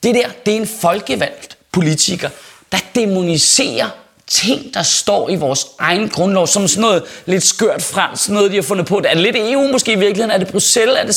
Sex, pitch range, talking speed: male, 170-240 Hz, 215 wpm